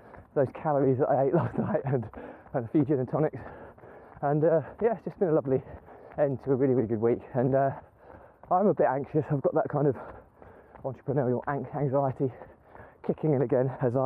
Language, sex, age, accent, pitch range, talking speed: English, male, 20-39, British, 125-150 Hz, 195 wpm